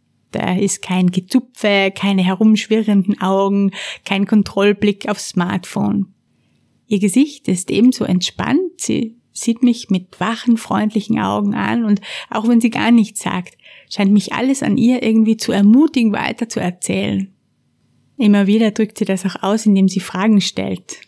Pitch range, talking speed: 190-225 Hz, 150 wpm